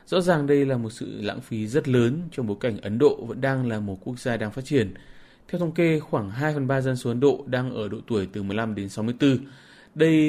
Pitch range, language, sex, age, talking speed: 105-130 Hz, Vietnamese, male, 20-39, 245 wpm